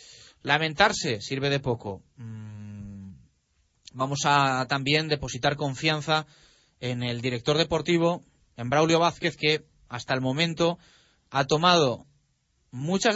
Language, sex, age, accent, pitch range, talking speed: Spanish, male, 30-49, Spanish, 120-150 Hz, 105 wpm